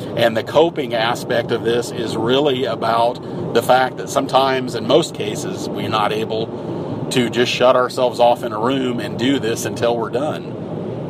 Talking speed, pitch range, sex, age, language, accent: 180 wpm, 110-120 Hz, male, 40-59, English, American